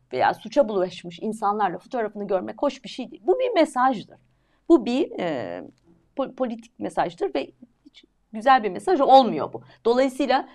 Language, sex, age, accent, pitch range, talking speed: Turkish, female, 50-69, native, 215-320 Hz, 150 wpm